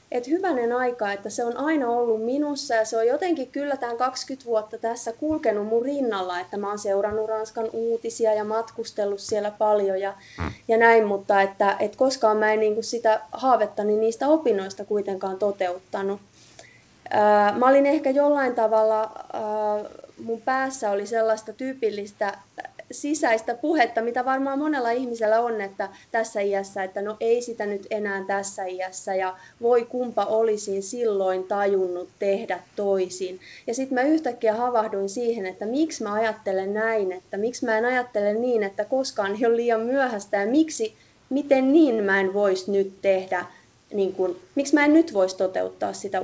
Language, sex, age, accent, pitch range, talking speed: Finnish, female, 20-39, native, 200-245 Hz, 160 wpm